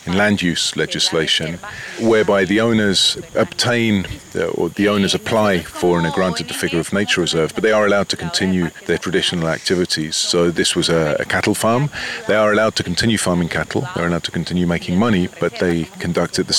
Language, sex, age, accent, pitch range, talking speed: Spanish, male, 40-59, British, 85-100 Hz, 195 wpm